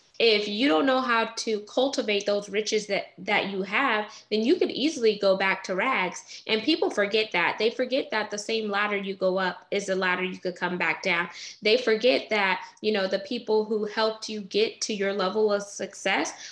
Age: 10-29